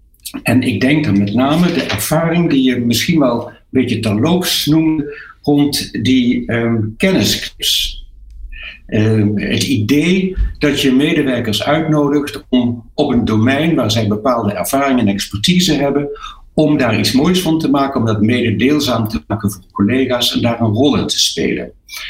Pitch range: 105-145 Hz